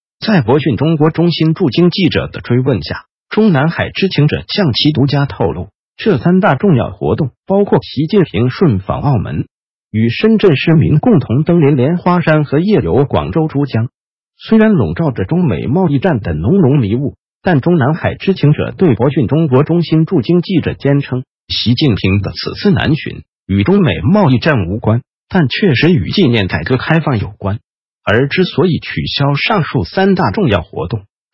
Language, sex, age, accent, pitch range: Chinese, male, 50-69, native, 120-175 Hz